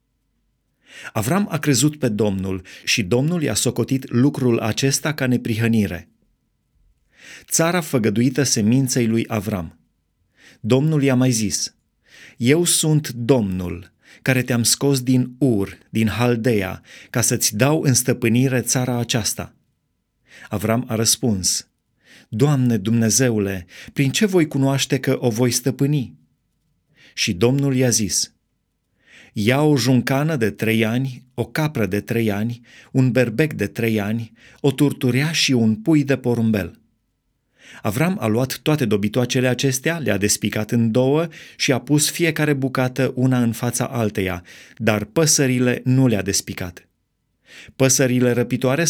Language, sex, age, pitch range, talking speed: Romanian, male, 30-49, 110-135 Hz, 130 wpm